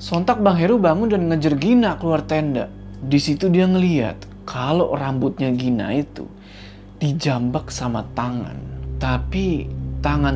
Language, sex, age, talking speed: Indonesian, male, 20-39, 125 wpm